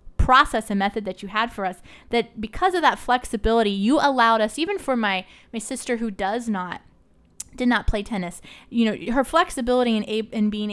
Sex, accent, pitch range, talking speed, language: female, American, 200-240 Hz, 200 wpm, English